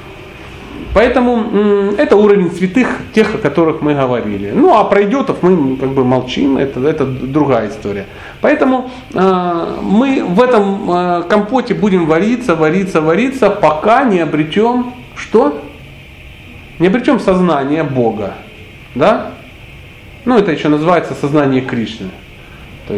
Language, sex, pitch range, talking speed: Russian, male, 130-205 Hz, 125 wpm